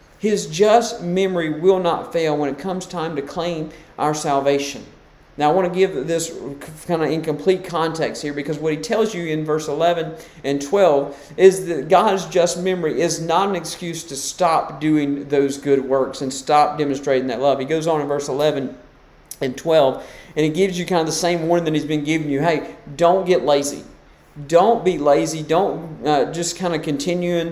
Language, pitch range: English, 145-185 Hz